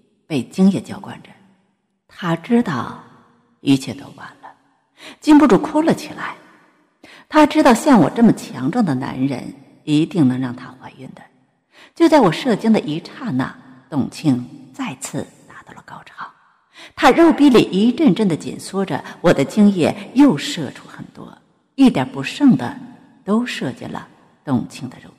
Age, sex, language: 50-69, female, Chinese